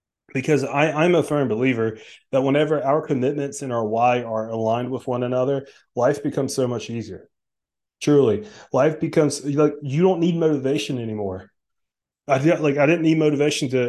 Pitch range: 125-150 Hz